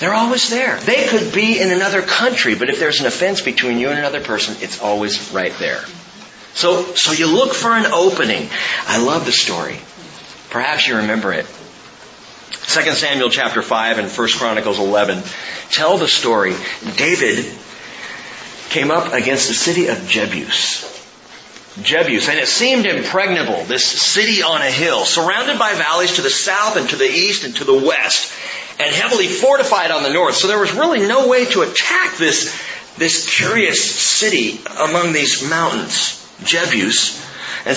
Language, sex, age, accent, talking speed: English, male, 40-59, American, 165 wpm